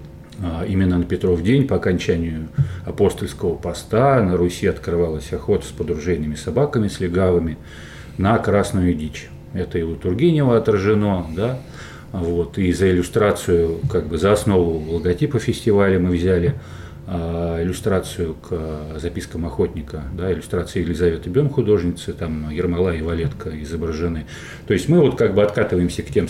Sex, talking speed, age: male, 140 wpm, 40-59